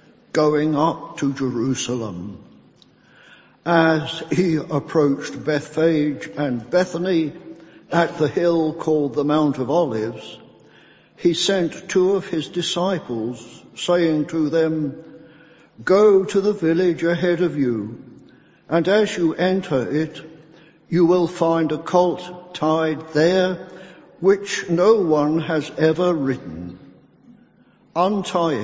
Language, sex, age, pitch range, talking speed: English, male, 60-79, 150-180 Hz, 110 wpm